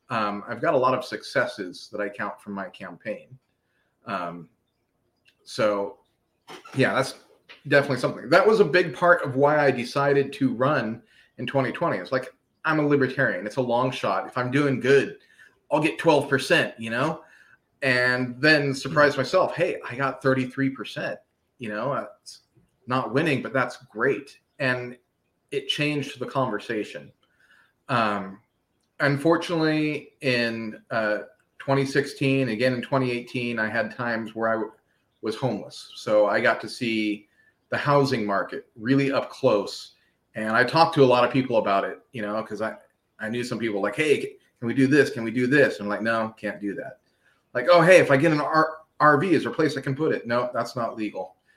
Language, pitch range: English, 115-145 Hz